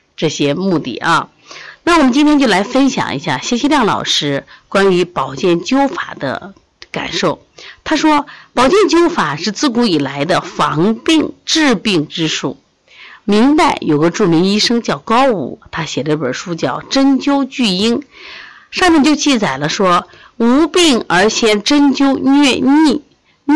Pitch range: 175-285 Hz